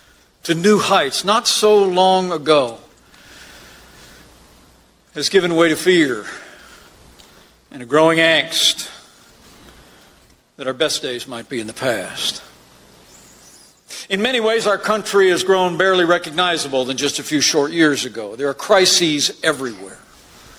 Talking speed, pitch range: 130 wpm, 140-180 Hz